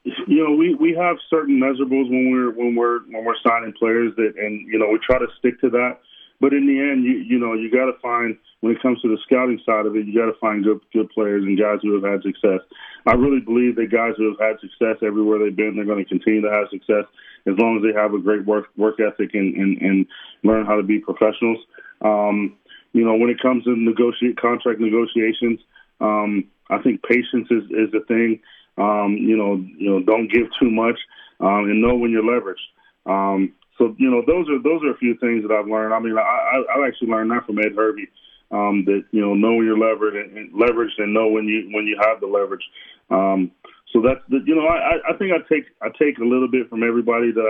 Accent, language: American, English